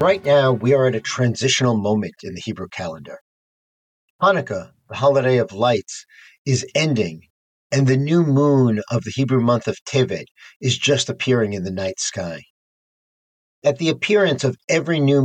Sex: male